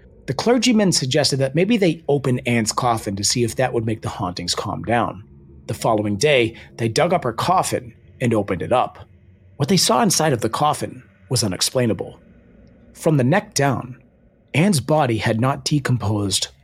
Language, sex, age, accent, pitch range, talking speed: English, male, 40-59, American, 100-140 Hz, 175 wpm